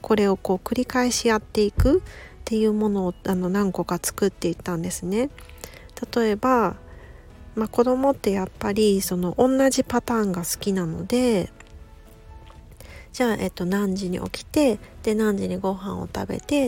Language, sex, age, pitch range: Japanese, female, 40-59, 195-245 Hz